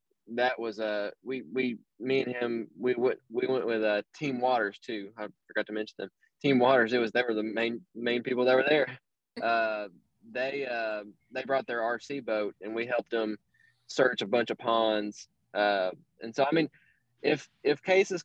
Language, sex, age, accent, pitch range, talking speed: English, male, 20-39, American, 110-130 Hz, 205 wpm